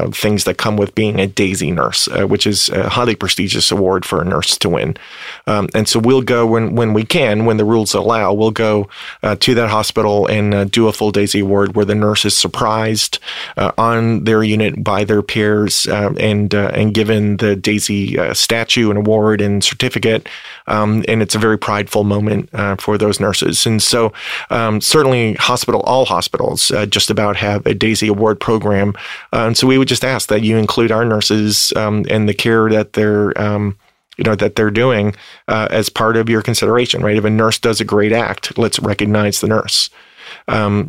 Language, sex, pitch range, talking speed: English, male, 105-110 Hz, 205 wpm